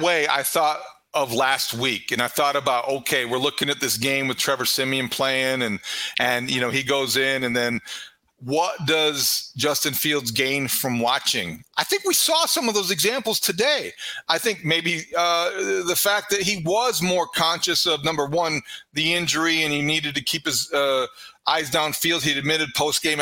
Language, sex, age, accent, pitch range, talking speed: English, male, 40-59, American, 135-170 Hz, 190 wpm